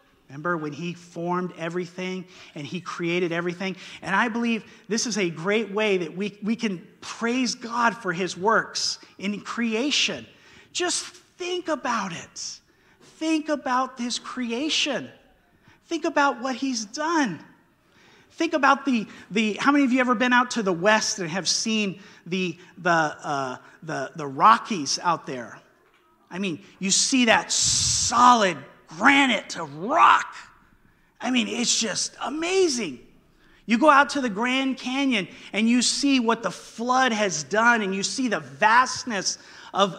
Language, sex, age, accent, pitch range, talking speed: English, male, 30-49, American, 195-260 Hz, 150 wpm